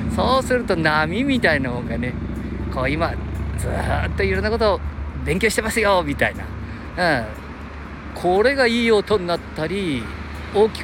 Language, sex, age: Japanese, male, 50-69